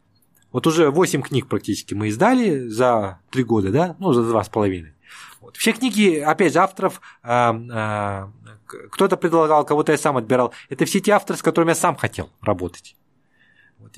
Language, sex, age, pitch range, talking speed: Russian, male, 20-39, 120-180 Hz, 155 wpm